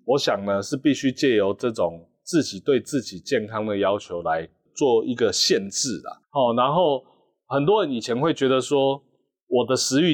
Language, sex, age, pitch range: Chinese, male, 30-49, 115-170 Hz